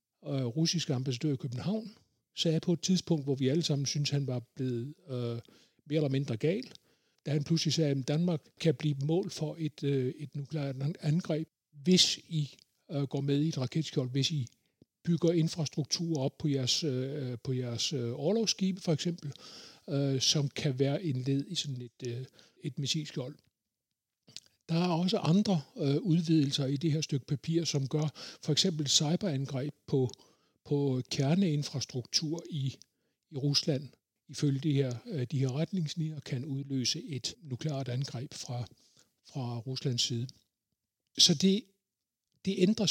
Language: Danish